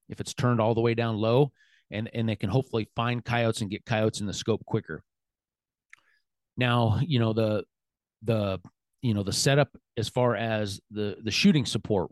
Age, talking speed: 30-49, 190 wpm